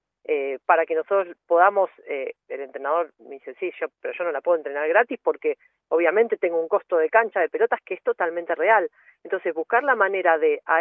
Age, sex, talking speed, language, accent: 40-59, female, 210 wpm, Spanish, Argentinian